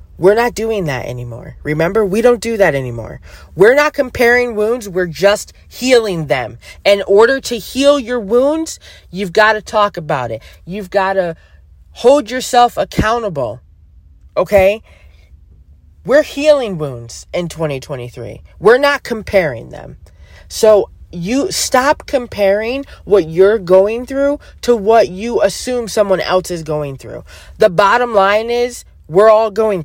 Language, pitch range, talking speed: English, 155-240 Hz, 145 wpm